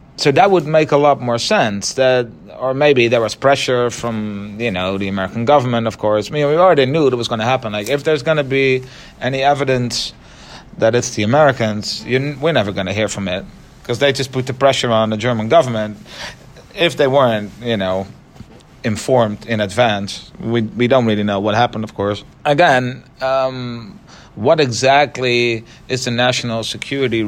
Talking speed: 190 wpm